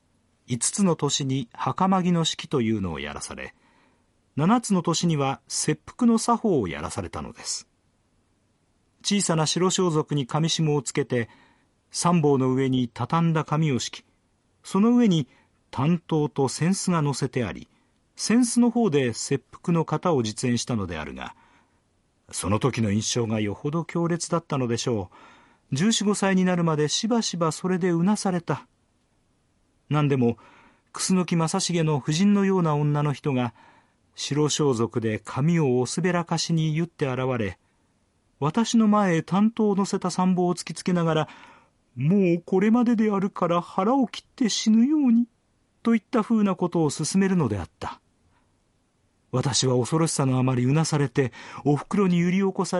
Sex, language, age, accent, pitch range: male, Japanese, 40-59, native, 130-185 Hz